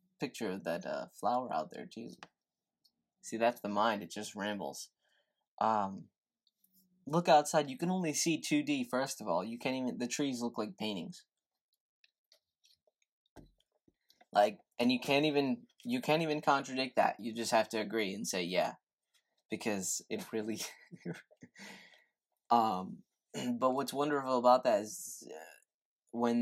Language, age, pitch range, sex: English, 20-39, 110-180 Hz, male